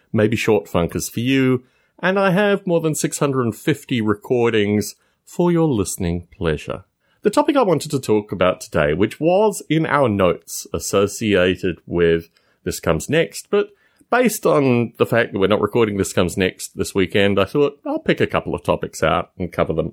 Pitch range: 100-170 Hz